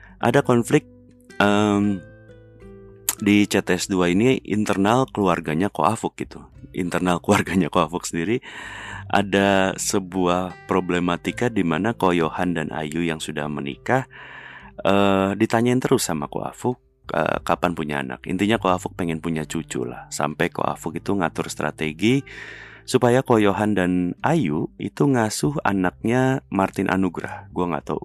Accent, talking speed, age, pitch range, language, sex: native, 125 wpm, 30-49, 80-105 Hz, Indonesian, male